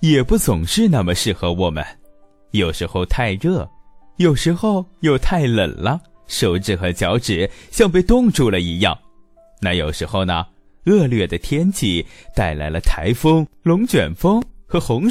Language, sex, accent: Chinese, male, native